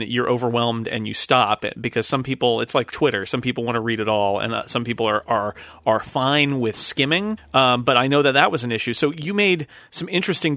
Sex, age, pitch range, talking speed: male, 40-59, 120-160 Hz, 245 wpm